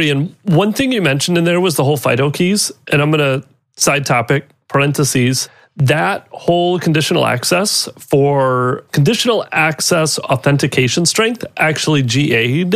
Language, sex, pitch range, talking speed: English, male, 135-175 Hz, 140 wpm